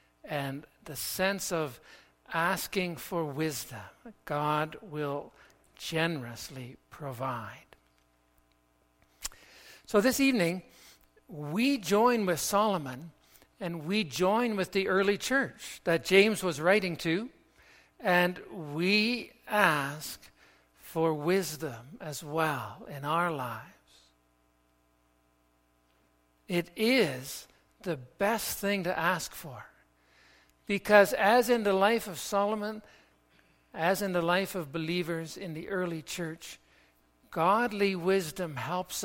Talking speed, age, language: 105 wpm, 60-79, English